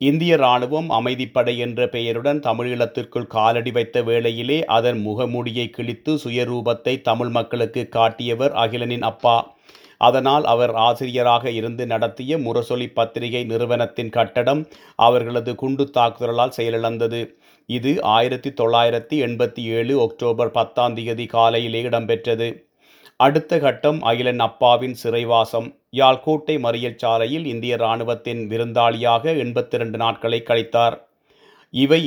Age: 30-49